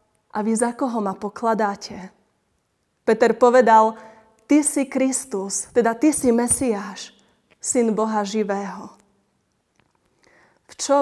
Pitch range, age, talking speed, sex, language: 205-240 Hz, 20-39, 110 wpm, female, Slovak